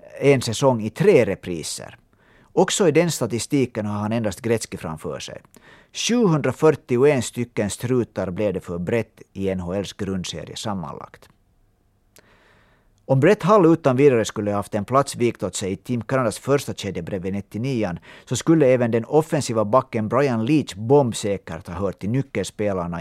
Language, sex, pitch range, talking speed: Swedish, male, 100-135 Hz, 150 wpm